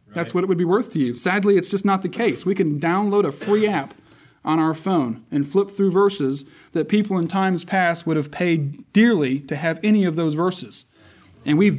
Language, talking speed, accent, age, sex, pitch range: English, 225 wpm, American, 30-49, male, 155-200 Hz